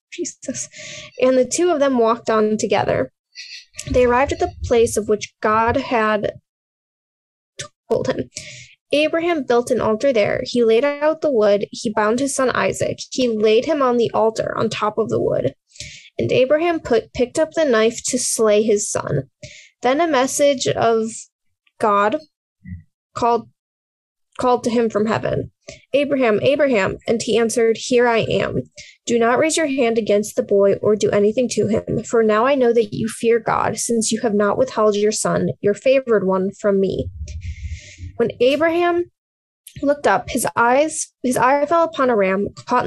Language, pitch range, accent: English, 215-280 Hz, American